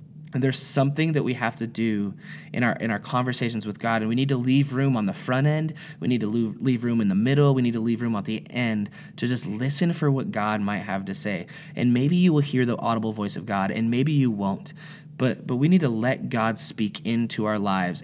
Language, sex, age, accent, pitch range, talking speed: English, male, 20-39, American, 115-155 Hz, 255 wpm